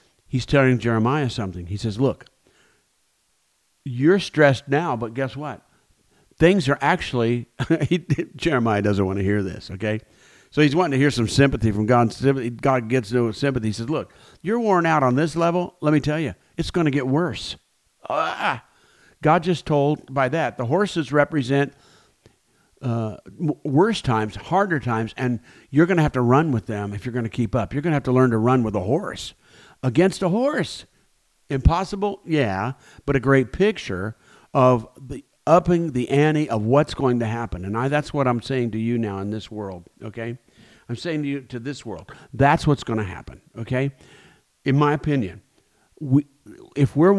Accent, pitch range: American, 115-150 Hz